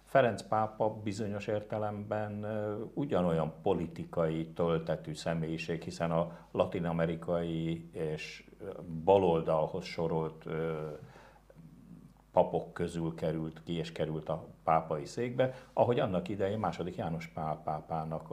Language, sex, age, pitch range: Hungarian, male, 60-79, 80-95 Hz